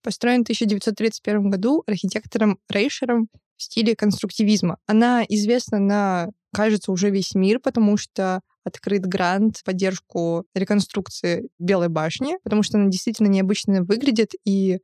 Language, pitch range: Russian, 190-220 Hz